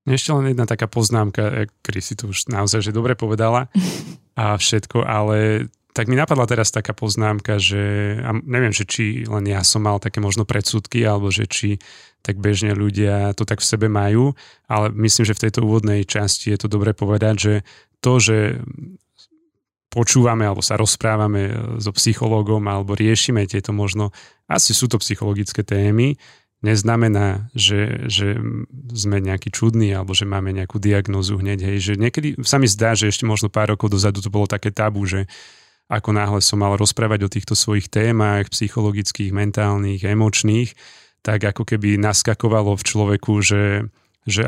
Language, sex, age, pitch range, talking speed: Slovak, male, 30-49, 100-110 Hz, 165 wpm